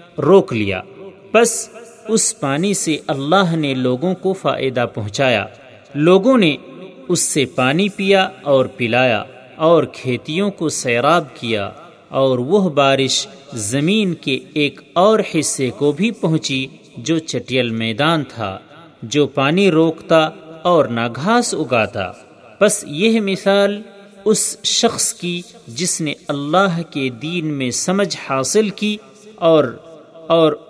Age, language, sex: 40-59, Urdu, male